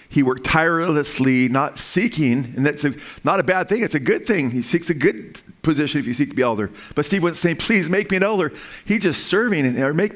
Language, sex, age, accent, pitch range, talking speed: English, male, 40-59, American, 125-160 Hz, 240 wpm